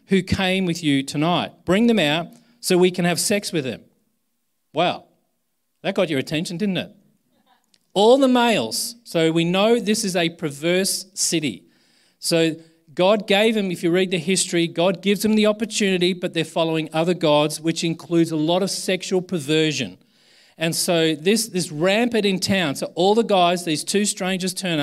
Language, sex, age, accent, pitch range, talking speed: English, male, 40-59, Australian, 150-190 Hz, 180 wpm